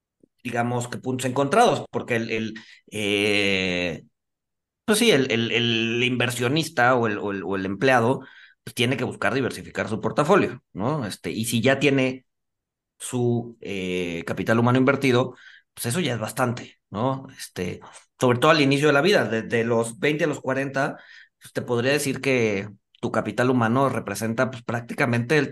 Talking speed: 165 wpm